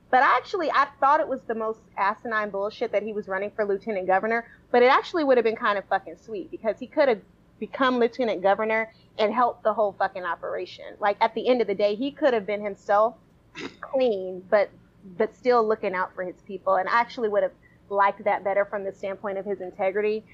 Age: 30-49